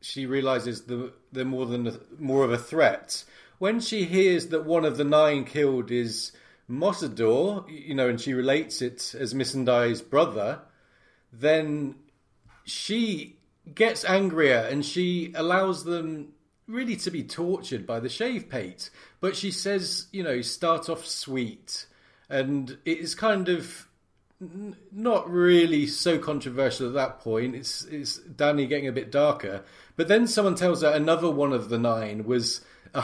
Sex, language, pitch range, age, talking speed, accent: male, English, 125-175 Hz, 40-59, 160 wpm, British